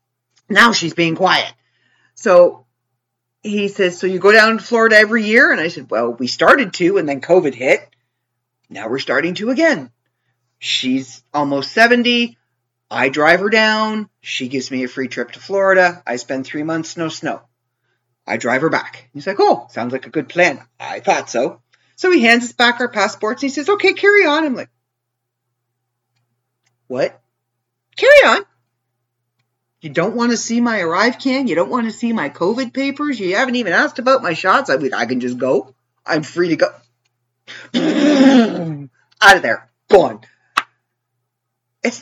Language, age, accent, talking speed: English, 40-59, American, 175 wpm